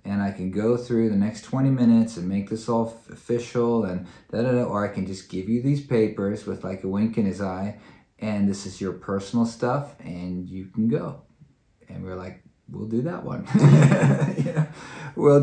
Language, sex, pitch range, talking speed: English, male, 95-115 Hz, 205 wpm